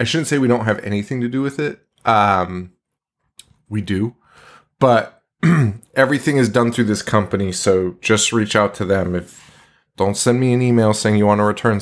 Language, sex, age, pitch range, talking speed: English, male, 30-49, 100-130 Hz, 195 wpm